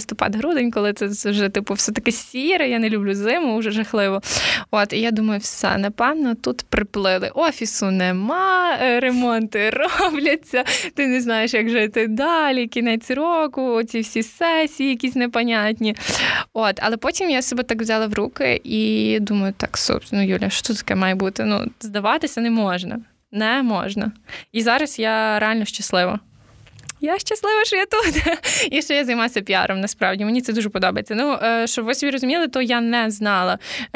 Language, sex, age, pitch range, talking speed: Ukrainian, female, 20-39, 205-250 Hz, 165 wpm